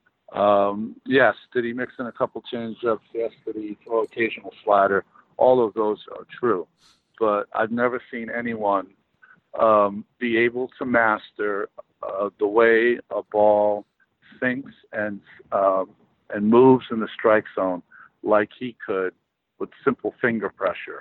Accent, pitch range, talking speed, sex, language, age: American, 105-120 Hz, 145 wpm, male, English, 60-79